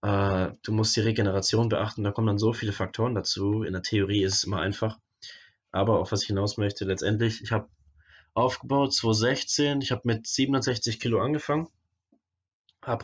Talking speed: 170 wpm